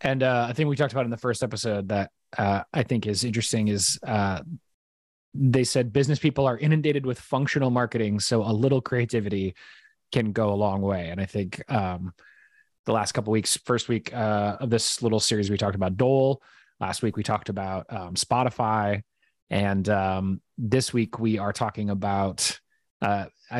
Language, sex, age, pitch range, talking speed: English, male, 20-39, 105-130 Hz, 185 wpm